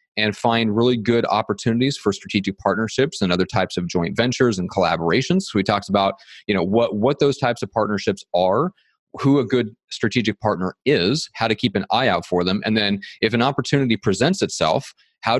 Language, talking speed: English, 200 wpm